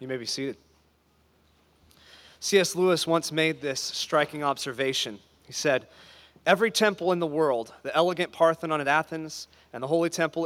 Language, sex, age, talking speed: English, male, 30-49, 155 wpm